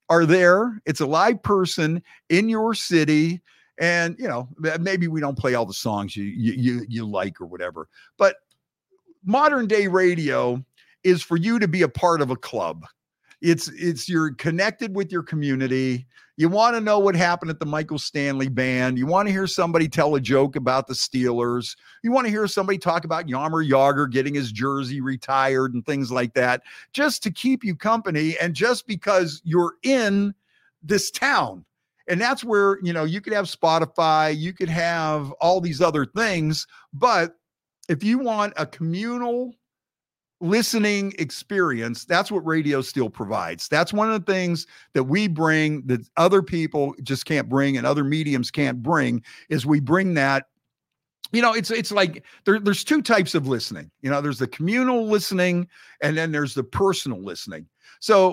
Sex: male